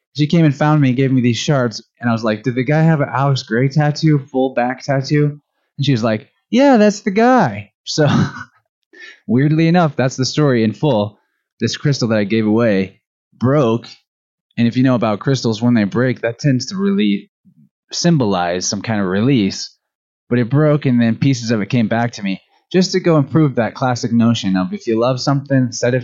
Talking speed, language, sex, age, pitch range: 210 wpm, English, male, 20-39, 110-150 Hz